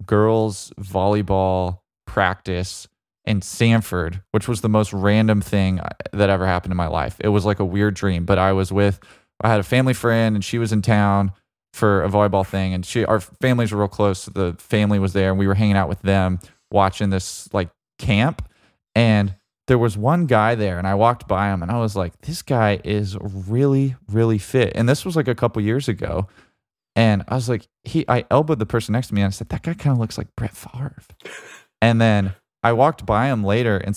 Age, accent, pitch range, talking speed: 20-39, American, 95-115 Hz, 215 wpm